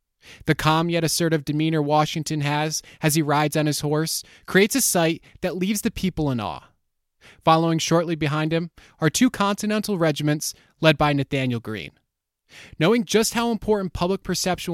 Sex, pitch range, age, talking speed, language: male, 145-180 Hz, 20-39, 165 wpm, English